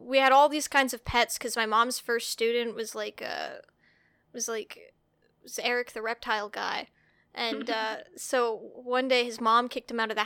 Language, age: English, 10-29